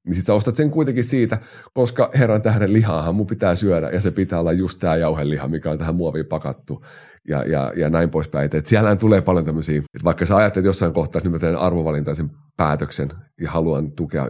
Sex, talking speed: male, 215 wpm